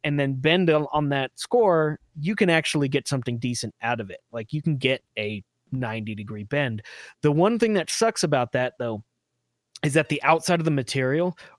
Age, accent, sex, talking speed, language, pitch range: 30-49, American, male, 195 wpm, English, 125-155 Hz